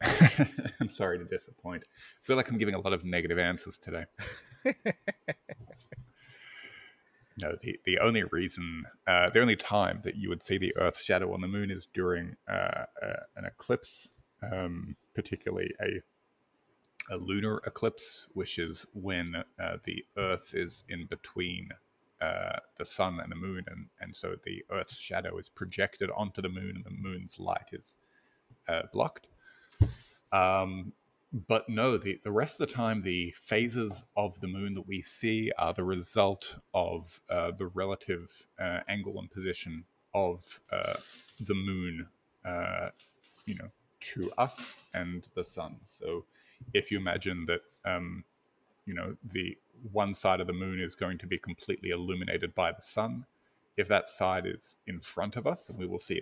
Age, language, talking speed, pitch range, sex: 30-49, English, 165 wpm, 90-110 Hz, male